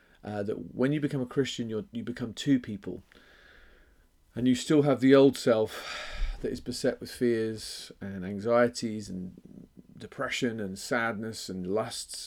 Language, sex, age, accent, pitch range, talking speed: English, male, 40-59, British, 105-140 Hz, 150 wpm